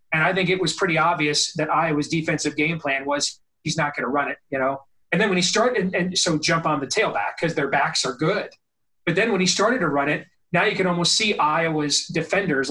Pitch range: 150-185 Hz